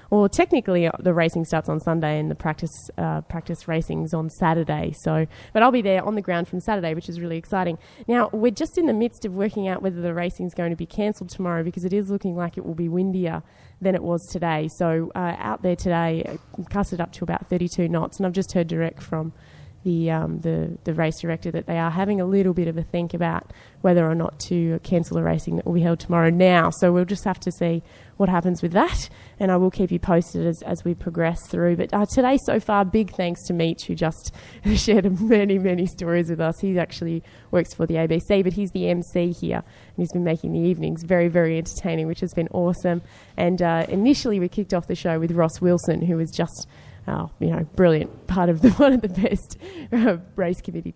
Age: 20-39